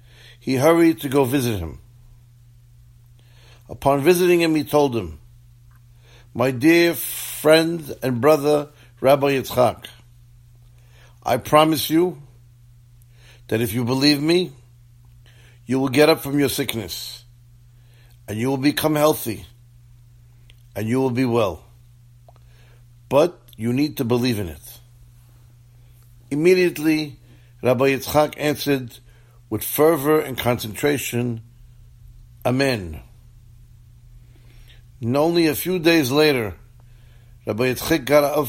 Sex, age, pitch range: male, 50-69, 120-140 Hz